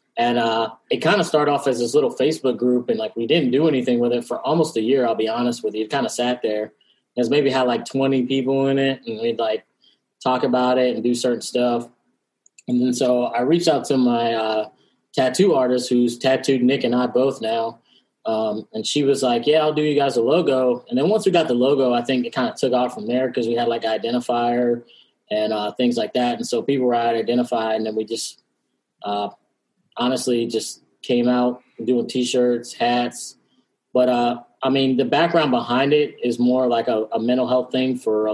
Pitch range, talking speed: 115-130 Hz, 230 wpm